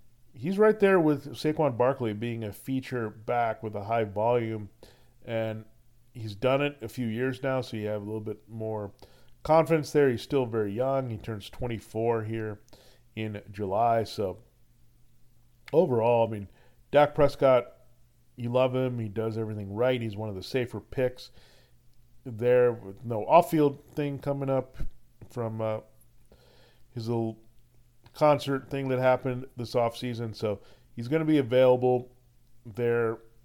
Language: English